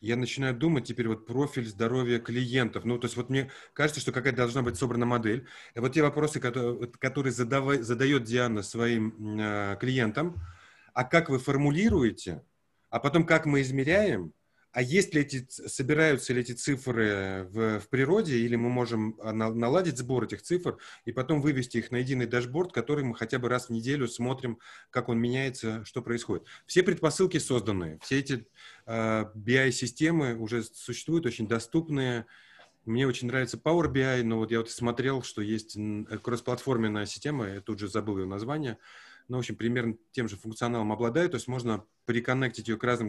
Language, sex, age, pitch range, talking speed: Russian, male, 30-49, 110-135 Hz, 170 wpm